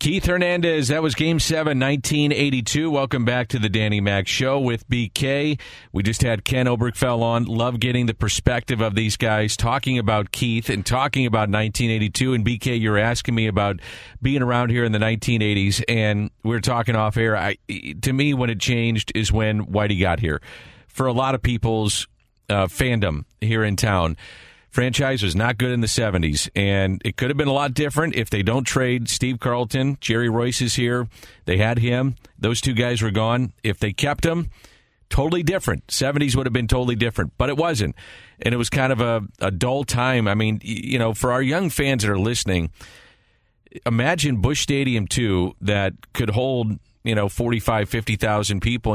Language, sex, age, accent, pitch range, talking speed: English, male, 40-59, American, 105-130 Hz, 190 wpm